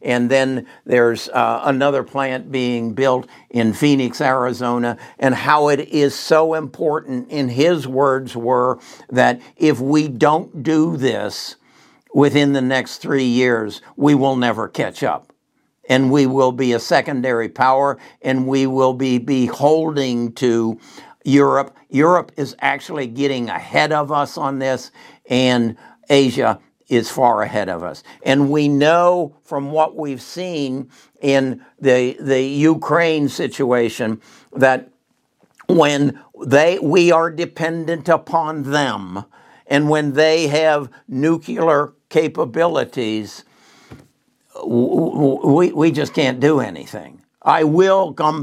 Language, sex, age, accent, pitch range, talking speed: English, male, 60-79, American, 125-150 Hz, 125 wpm